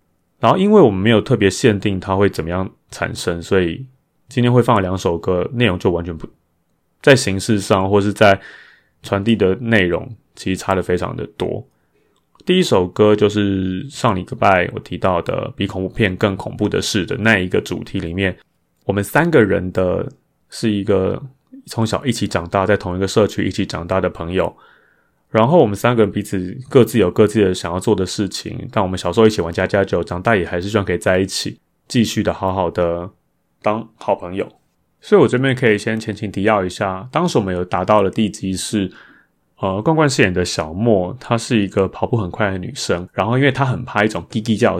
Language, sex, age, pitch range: Chinese, male, 20-39, 95-115 Hz